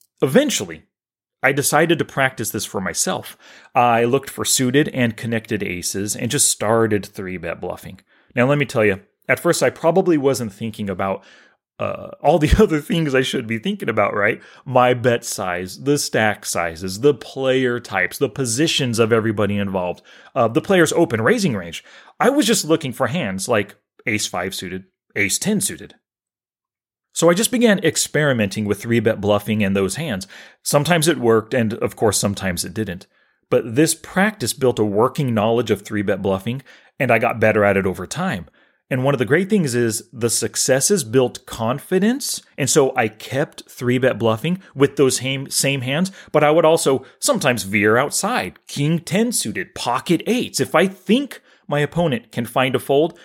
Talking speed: 175 wpm